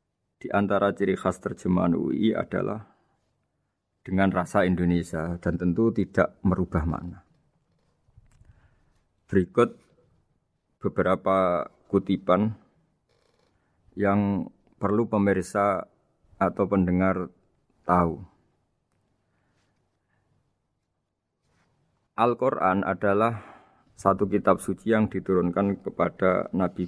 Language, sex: Indonesian, male